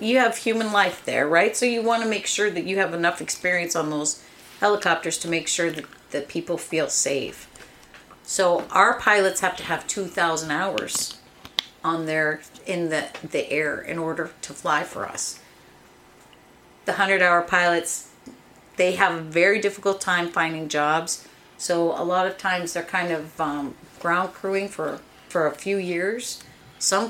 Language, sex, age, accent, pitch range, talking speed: English, female, 40-59, American, 160-190 Hz, 170 wpm